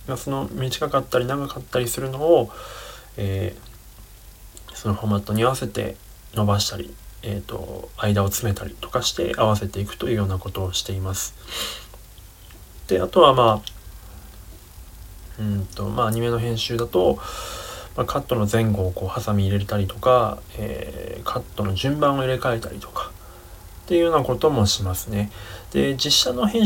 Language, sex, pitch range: Japanese, male, 95-125 Hz